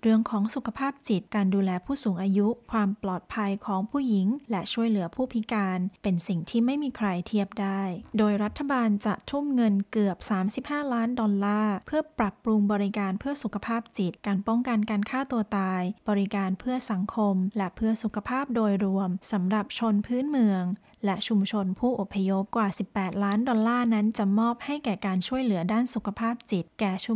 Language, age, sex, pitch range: Thai, 20-39, female, 195-230 Hz